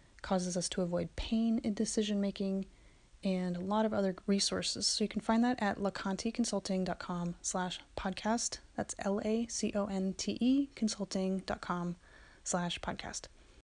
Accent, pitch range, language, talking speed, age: American, 175-220 Hz, English, 105 wpm, 30-49